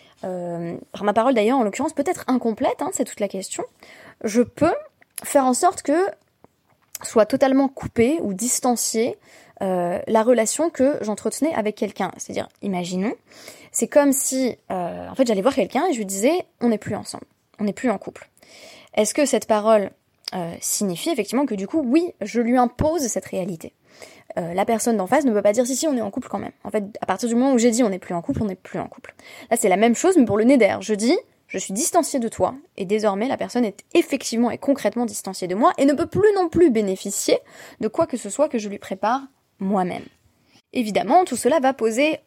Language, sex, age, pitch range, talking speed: French, female, 20-39, 210-285 Hz, 225 wpm